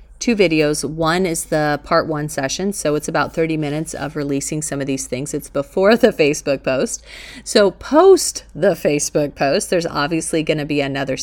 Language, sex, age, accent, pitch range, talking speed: English, female, 30-49, American, 145-170 Hz, 185 wpm